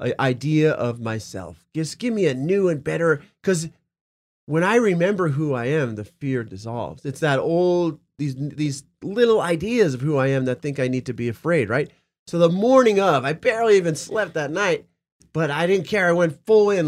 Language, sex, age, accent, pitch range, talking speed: English, male, 30-49, American, 150-190 Hz, 205 wpm